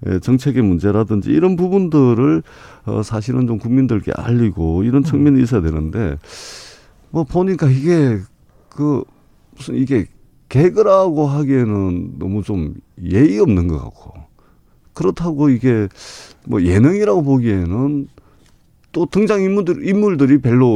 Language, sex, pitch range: Korean, male, 100-145 Hz